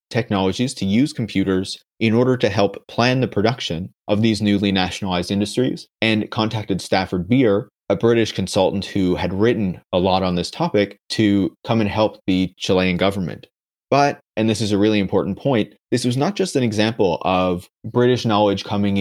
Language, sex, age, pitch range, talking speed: English, male, 20-39, 100-120 Hz, 175 wpm